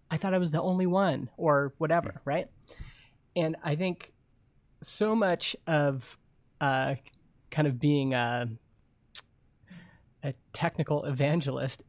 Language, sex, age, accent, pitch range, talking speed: English, male, 30-49, American, 135-170 Hz, 120 wpm